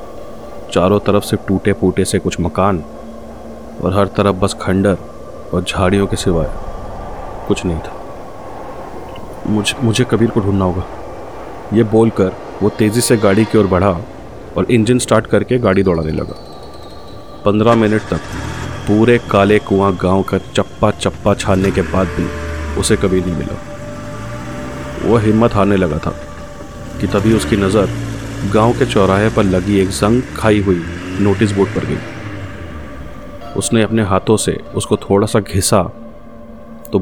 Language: Hindi